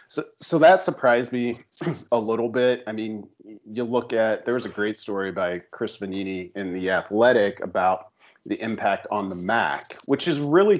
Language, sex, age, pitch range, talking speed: English, male, 40-59, 100-125 Hz, 185 wpm